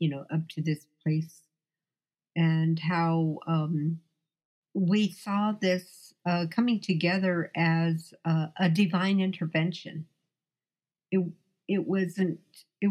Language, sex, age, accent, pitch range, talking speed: English, female, 50-69, American, 160-185 Hz, 110 wpm